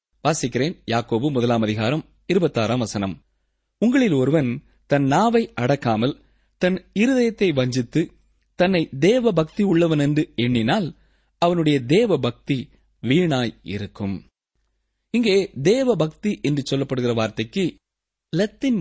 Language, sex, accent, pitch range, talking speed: Tamil, male, native, 120-185 Hz, 95 wpm